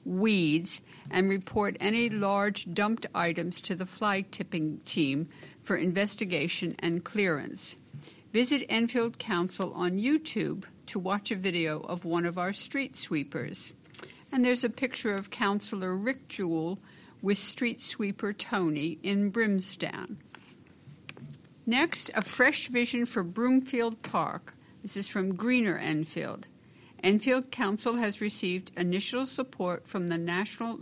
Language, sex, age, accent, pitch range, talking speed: English, female, 60-79, American, 175-225 Hz, 125 wpm